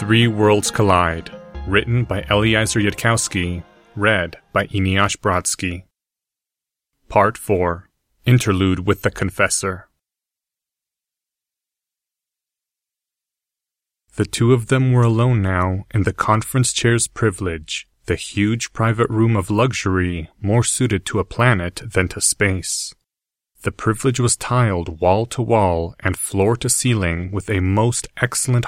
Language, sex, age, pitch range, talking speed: English, male, 30-49, 95-115 Hz, 115 wpm